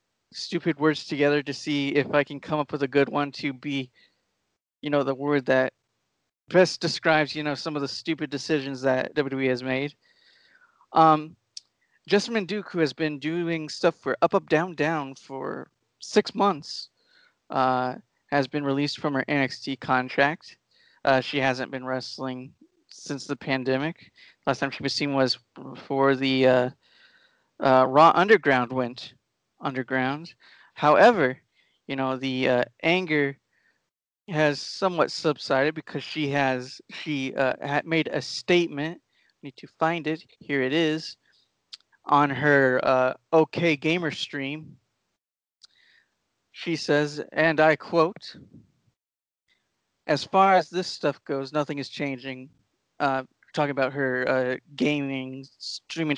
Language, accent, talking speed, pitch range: English, American, 140 wpm, 135-160 Hz